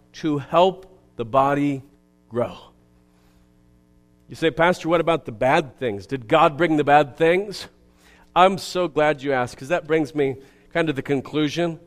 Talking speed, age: 160 wpm, 50-69